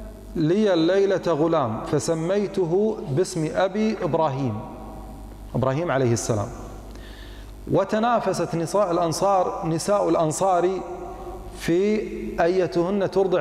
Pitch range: 140-195 Hz